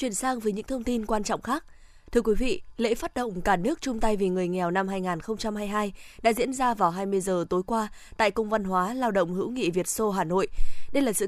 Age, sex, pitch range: 20-39, female, 195-240 Hz